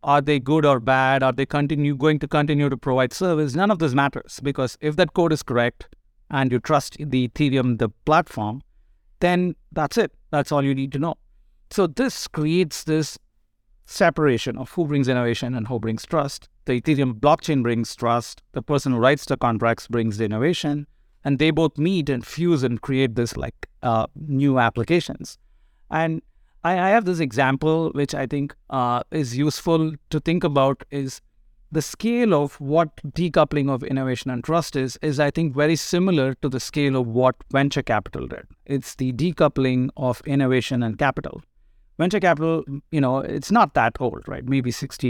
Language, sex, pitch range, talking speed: English, male, 125-155 Hz, 180 wpm